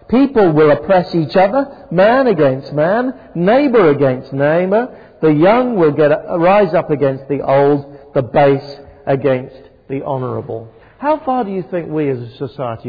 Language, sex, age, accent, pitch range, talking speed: English, male, 50-69, British, 110-140 Hz, 165 wpm